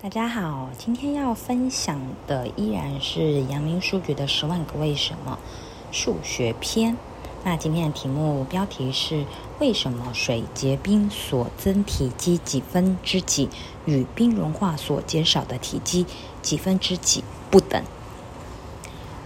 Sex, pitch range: female, 135-195 Hz